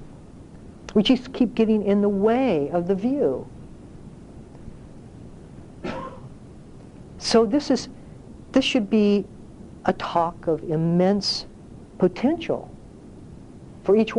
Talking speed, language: 95 wpm, English